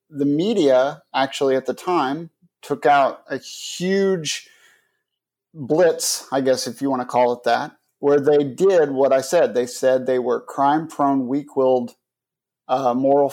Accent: American